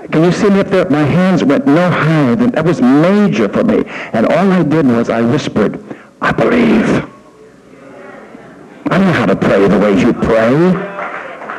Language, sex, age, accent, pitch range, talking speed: English, male, 60-79, American, 135-185 Hz, 185 wpm